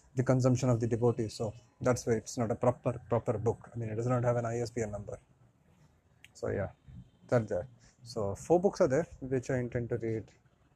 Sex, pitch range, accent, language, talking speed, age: male, 115-135 Hz, Indian, English, 205 wpm, 30-49